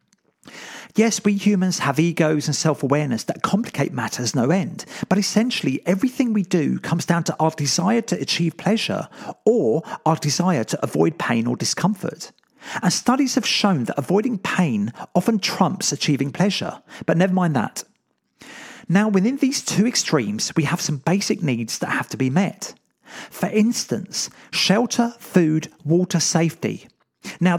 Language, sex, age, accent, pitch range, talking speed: English, male, 40-59, British, 155-205 Hz, 150 wpm